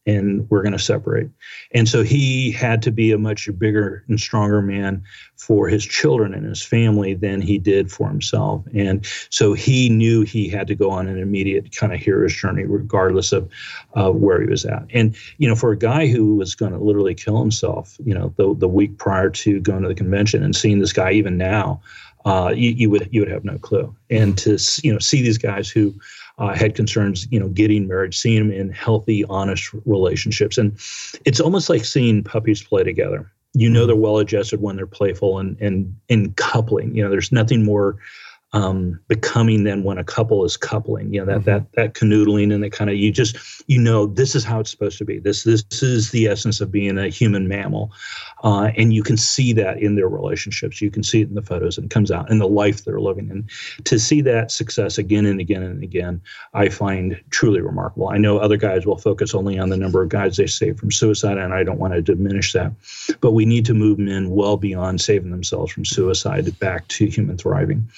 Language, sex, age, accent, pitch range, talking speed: English, male, 40-59, American, 100-110 Hz, 225 wpm